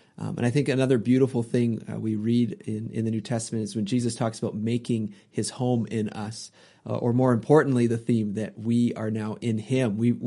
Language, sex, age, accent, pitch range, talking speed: English, male, 30-49, American, 110-125 Hz, 220 wpm